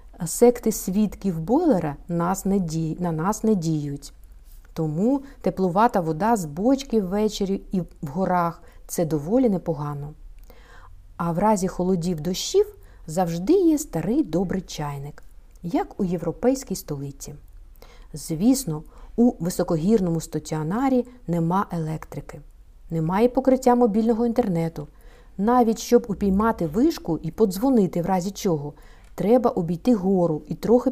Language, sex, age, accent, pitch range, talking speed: Ukrainian, female, 50-69, native, 165-245 Hz, 115 wpm